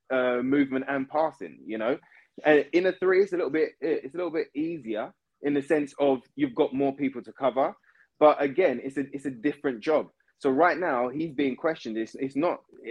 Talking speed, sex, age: 215 wpm, male, 20-39